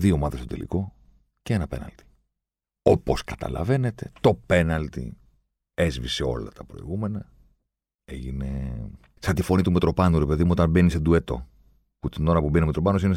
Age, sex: 40-59, male